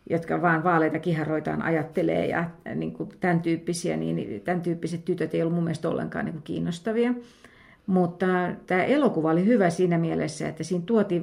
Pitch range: 160-195 Hz